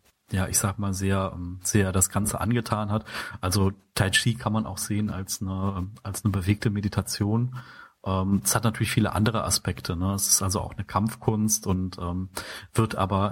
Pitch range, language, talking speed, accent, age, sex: 95-110 Hz, German, 185 wpm, German, 30-49, male